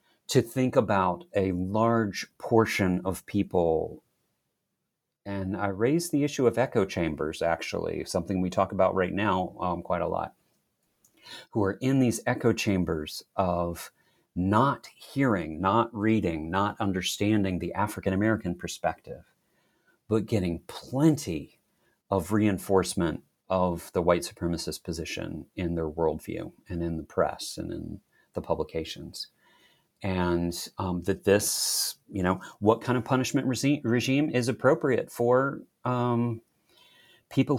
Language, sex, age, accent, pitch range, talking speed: English, male, 40-59, American, 95-115 Hz, 130 wpm